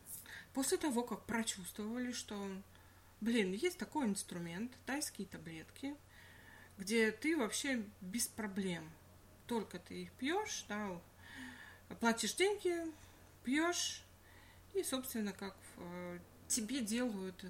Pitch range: 190-245 Hz